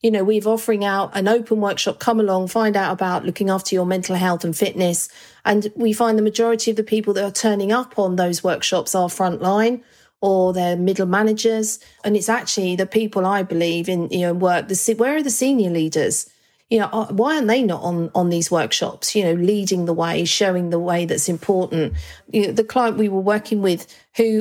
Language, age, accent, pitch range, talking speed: English, 40-59, British, 185-220 Hz, 215 wpm